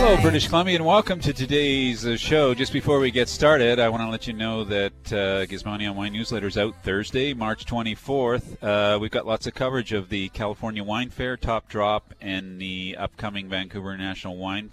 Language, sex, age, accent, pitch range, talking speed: English, male, 40-59, American, 100-130 Hz, 195 wpm